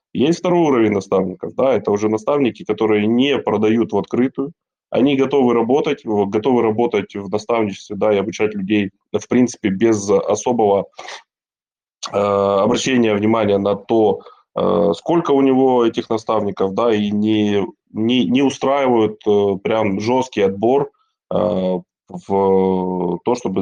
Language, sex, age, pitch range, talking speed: Russian, male, 20-39, 100-120 Hz, 130 wpm